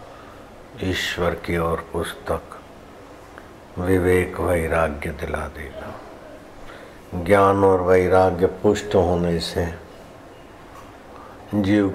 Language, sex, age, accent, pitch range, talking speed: Hindi, male, 60-79, native, 85-100 Hz, 75 wpm